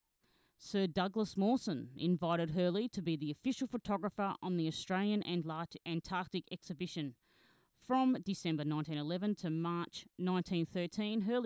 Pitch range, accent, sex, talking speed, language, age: 160-205 Hz, Australian, female, 115 wpm, English, 30-49